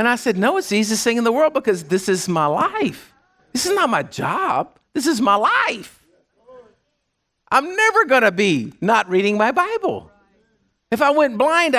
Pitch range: 215-295 Hz